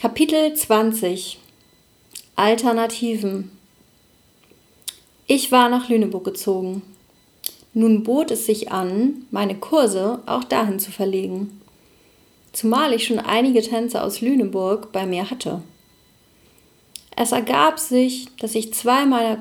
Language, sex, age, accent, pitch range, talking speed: German, female, 40-59, German, 200-245 Hz, 110 wpm